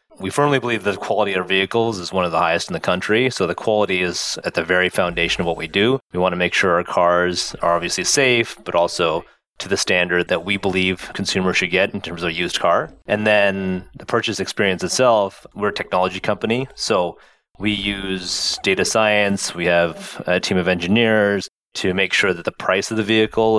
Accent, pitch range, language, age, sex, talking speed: American, 90-105 Hz, English, 30-49, male, 220 wpm